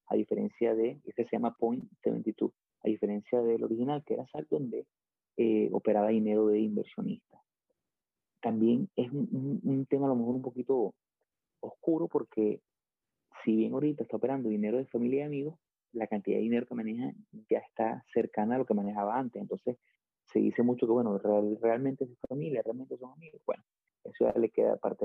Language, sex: Spanish, male